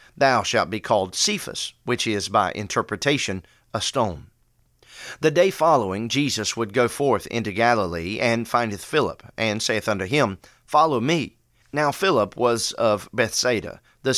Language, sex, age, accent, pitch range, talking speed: English, male, 40-59, American, 110-140 Hz, 150 wpm